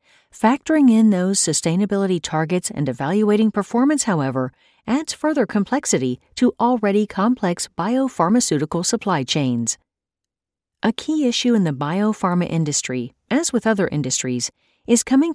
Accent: American